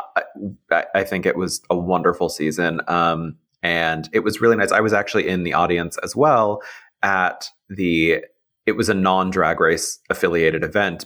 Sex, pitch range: male, 80-95 Hz